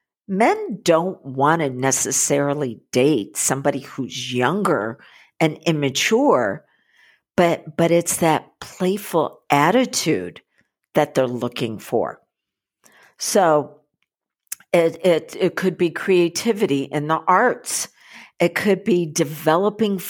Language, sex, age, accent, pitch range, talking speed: English, female, 50-69, American, 150-200 Hz, 105 wpm